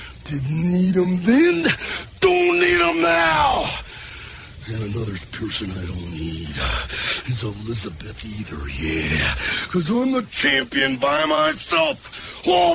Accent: American